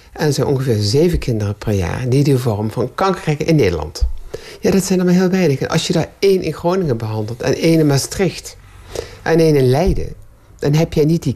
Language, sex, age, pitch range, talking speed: Dutch, male, 60-79, 105-150 Hz, 230 wpm